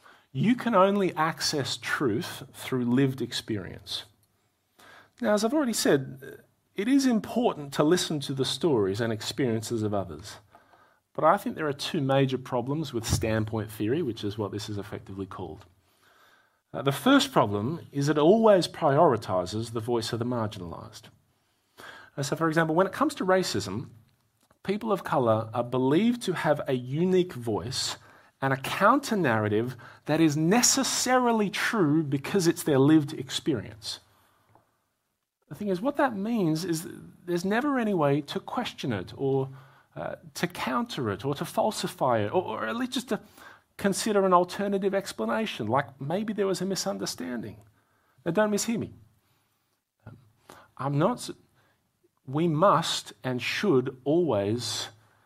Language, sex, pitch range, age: English, male, 115-190 Hz, 30-49